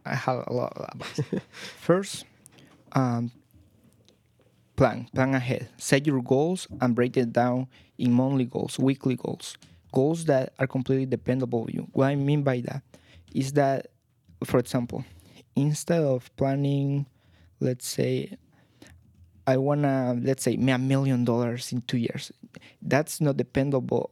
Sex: male